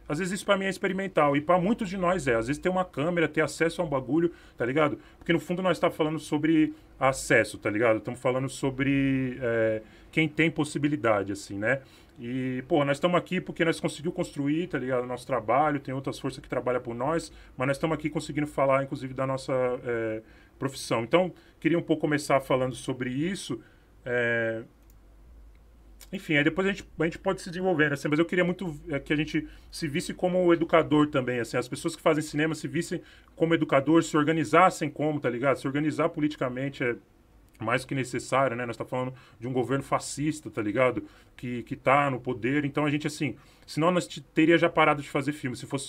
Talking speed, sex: 210 wpm, male